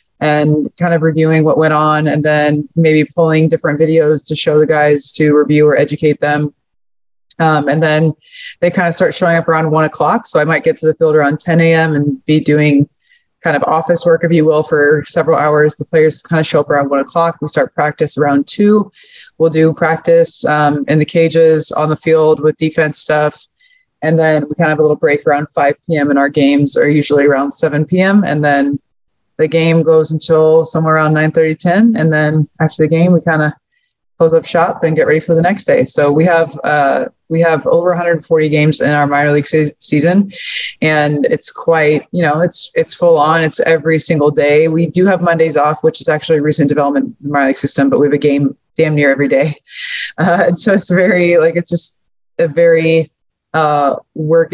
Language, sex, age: English, female, 20-39